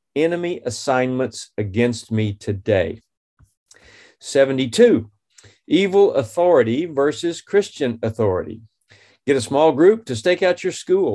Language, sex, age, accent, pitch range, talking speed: English, male, 40-59, American, 115-155 Hz, 110 wpm